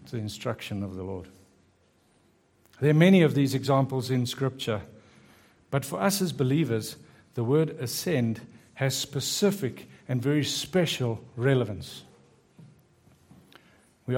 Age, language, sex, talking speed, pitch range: 60-79, English, male, 120 wpm, 115-150 Hz